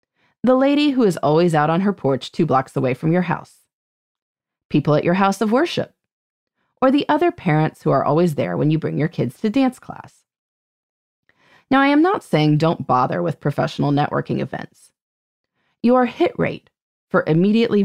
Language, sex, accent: English, female, American